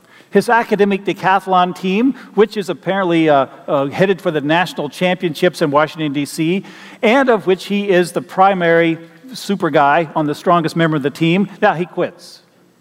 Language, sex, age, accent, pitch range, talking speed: English, male, 40-59, American, 160-205 Hz, 170 wpm